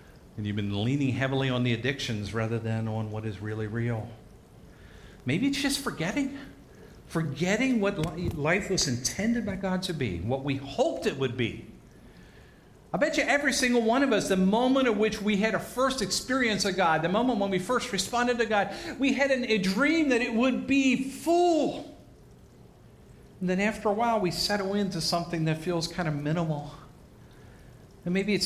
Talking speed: 180 wpm